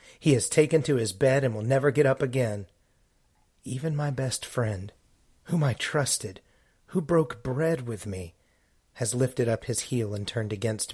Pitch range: 105-130 Hz